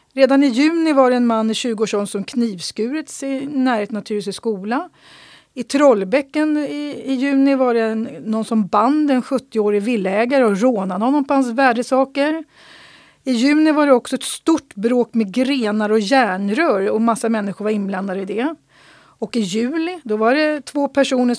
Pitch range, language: 215-270 Hz, Swedish